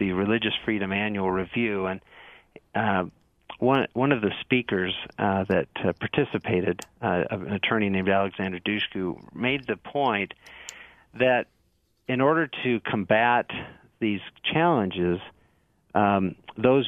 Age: 50-69